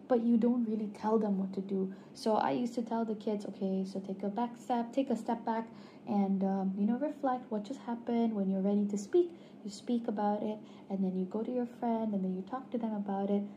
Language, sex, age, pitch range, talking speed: Indonesian, female, 20-39, 205-245 Hz, 255 wpm